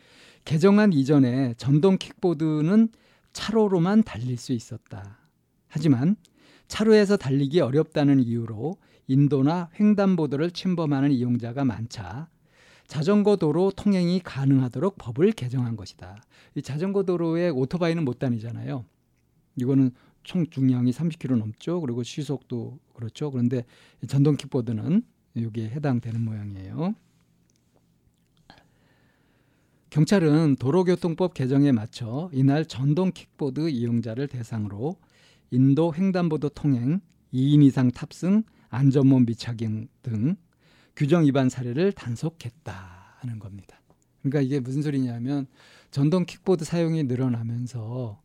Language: Korean